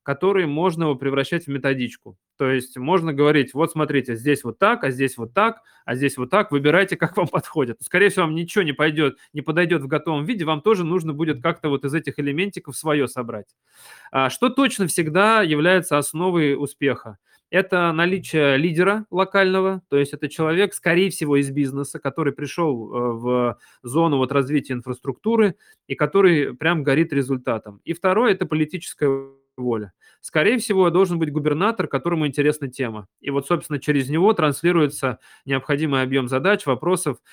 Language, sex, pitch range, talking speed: Russian, male, 130-170 Hz, 160 wpm